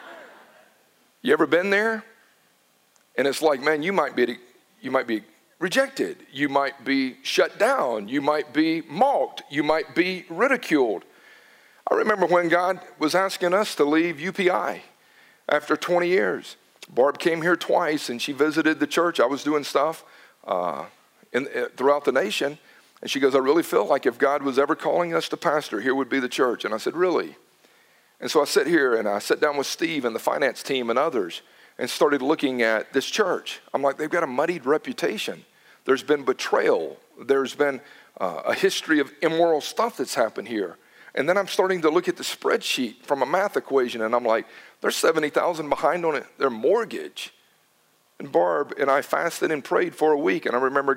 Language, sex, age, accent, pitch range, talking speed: English, male, 50-69, American, 135-180 Hz, 190 wpm